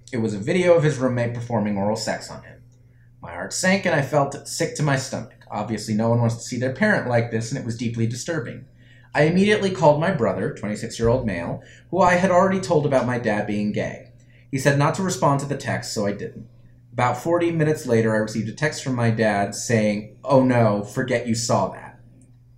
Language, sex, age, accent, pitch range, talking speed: English, male, 30-49, American, 110-130 Hz, 220 wpm